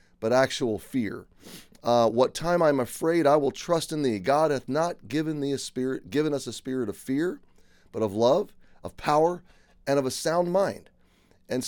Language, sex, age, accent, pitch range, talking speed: English, male, 30-49, American, 105-140 Hz, 190 wpm